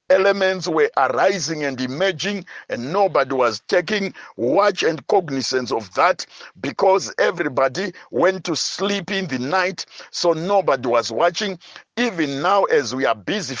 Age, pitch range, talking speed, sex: 60-79, 160-200 Hz, 140 wpm, male